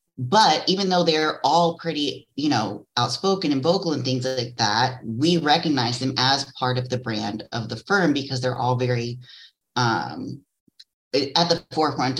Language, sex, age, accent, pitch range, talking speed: English, female, 30-49, American, 125-155 Hz, 165 wpm